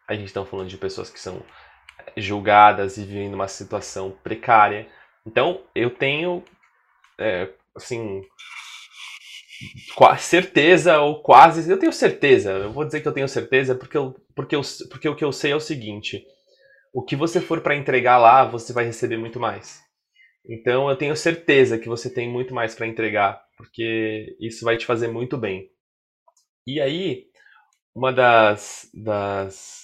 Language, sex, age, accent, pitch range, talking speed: Portuguese, male, 20-39, Brazilian, 110-145 Hz, 160 wpm